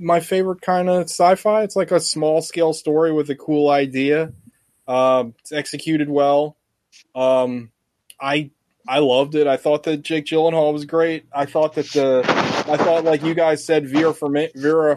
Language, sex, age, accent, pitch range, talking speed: English, male, 20-39, American, 135-165 Hz, 170 wpm